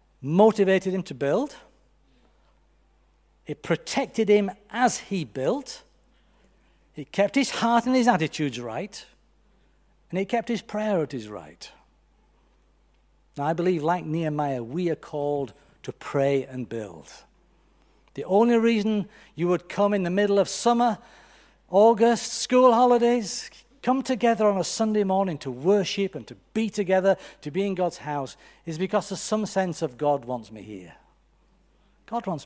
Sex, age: male, 60-79